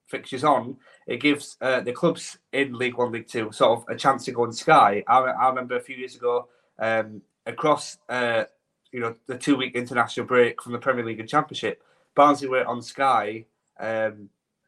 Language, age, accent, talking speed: English, 30-49, British, 190 wpm